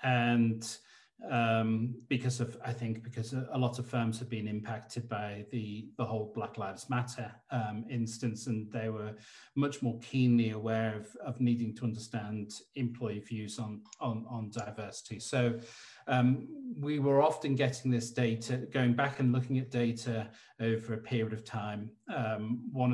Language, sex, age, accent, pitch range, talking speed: English, male, 40-59, British, 110-125 Hz, 160 wpm